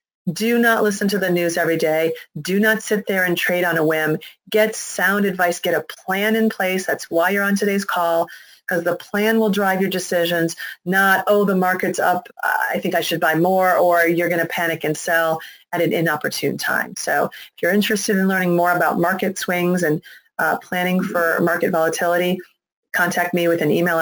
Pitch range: 170-205 Hz